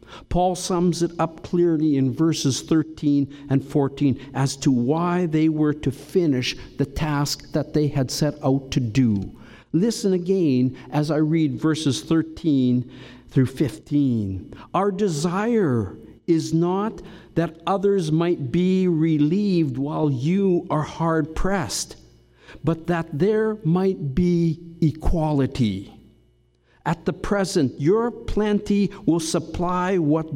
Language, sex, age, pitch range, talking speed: English, male, 60-79, 130-165 Hz, 125 wpm